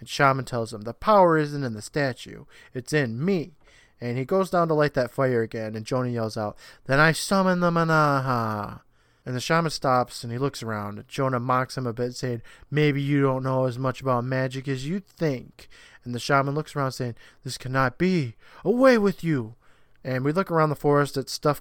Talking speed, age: 215 wpm, 20-39